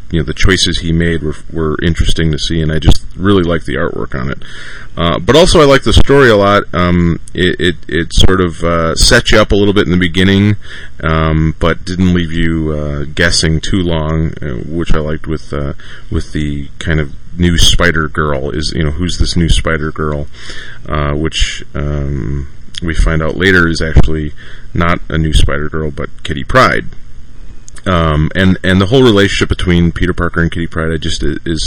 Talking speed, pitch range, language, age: 205 wpm, 80-90 Hz, English, 30-49